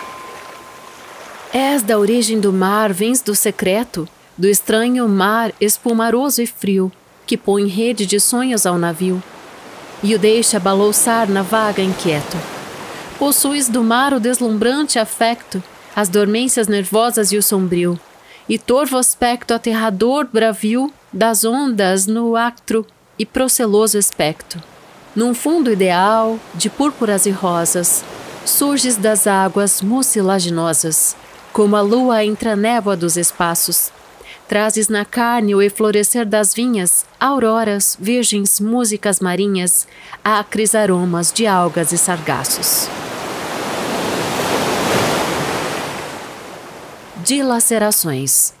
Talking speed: 110 wpm